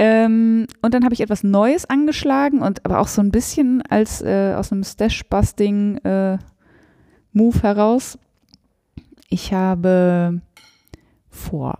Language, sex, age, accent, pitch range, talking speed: German, female, 20-39, German, 155-215 Hz, 125 wpm